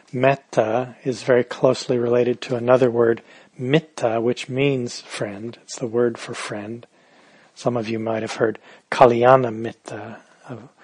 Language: English